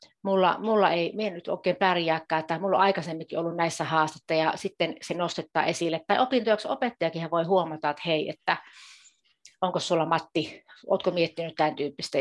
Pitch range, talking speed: 165-205 Hz, 165 wpm